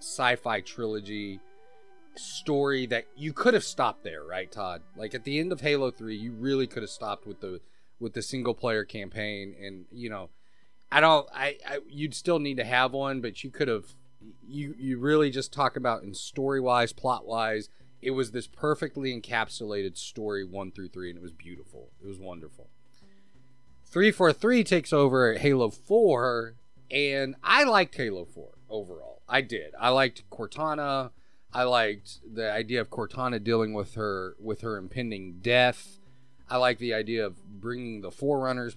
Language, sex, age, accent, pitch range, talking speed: English, male, 30-49, American, 100-130 Hz, 175 wpm